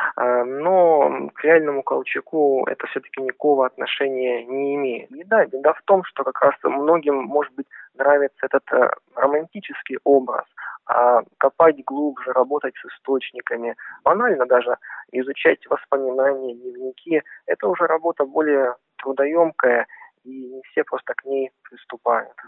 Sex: male